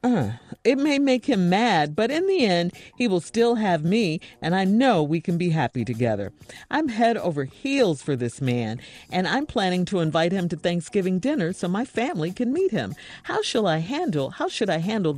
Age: 50-69